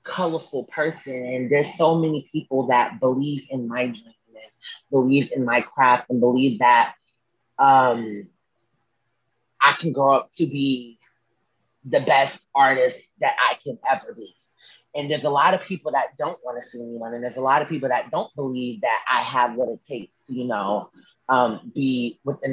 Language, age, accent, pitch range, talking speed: English, 30-49, American, 120-145 Hz, 180 wpm